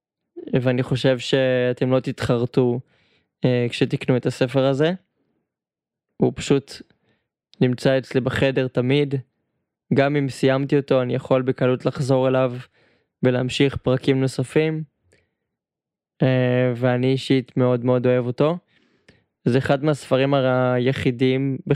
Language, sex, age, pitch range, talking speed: Hebrew, male, 20-39, 125-145 Hz, 90 wpm